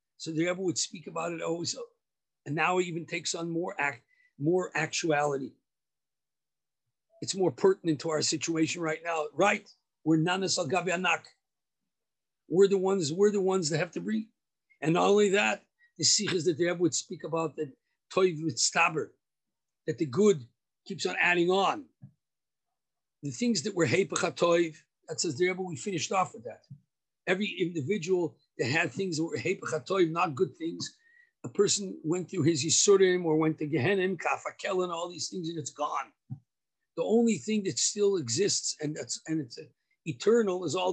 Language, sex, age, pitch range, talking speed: English, male, 50-69, 160-205 Hz, 165 wpm